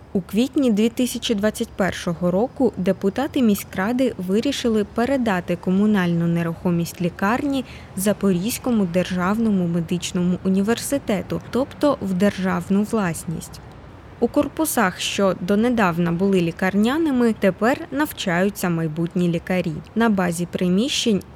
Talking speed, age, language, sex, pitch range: 90 wpm, 20-39, Ukrainian, female, 185-235 Hz